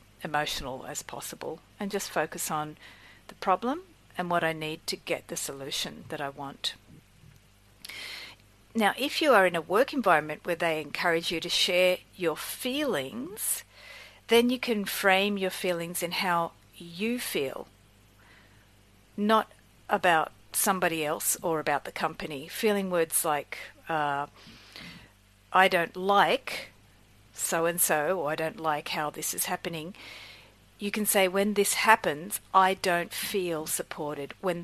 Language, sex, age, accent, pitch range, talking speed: English, female, 50-69, Australian, 150-190 Hz, 145 wpm